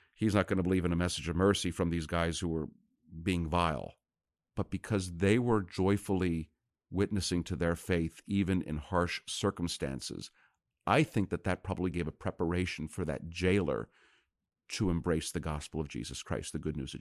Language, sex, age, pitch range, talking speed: English, male, 50-69, 80-105 Hz, 185 wpm